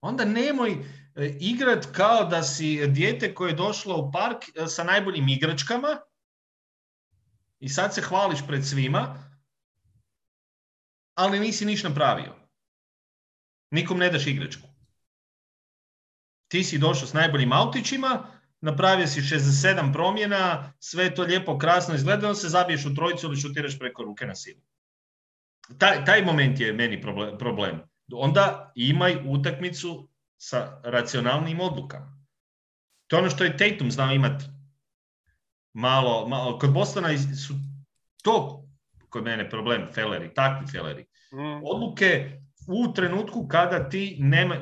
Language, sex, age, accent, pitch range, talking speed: English, male, 40-59, Croatian, 135-180 Hz, 125 wpm